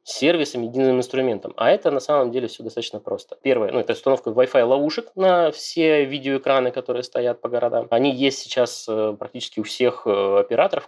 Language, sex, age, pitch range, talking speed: Russian, male, 20-39, 115-150 Hz, 165 wpm